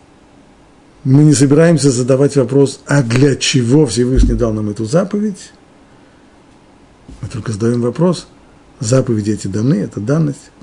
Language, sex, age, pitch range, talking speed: Russian, male, 50-69, 115-150 Hz, 125 wpm